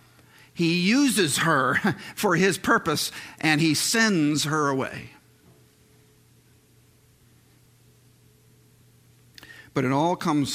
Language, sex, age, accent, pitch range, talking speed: English, male, 50-69, American, 120-140 Hz, 85 wpm